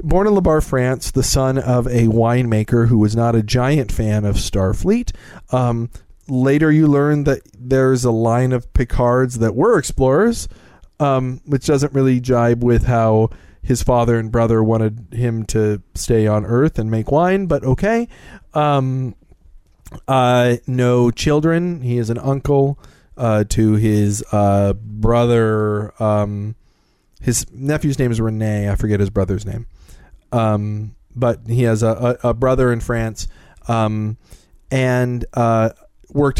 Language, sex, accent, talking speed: English, male, American, 150 wpm